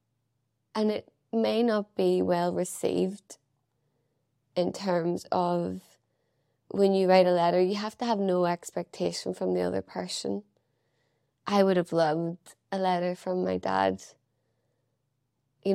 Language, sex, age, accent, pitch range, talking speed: English, female, 20-39, Irish, 135-180 Hz, 130 wpm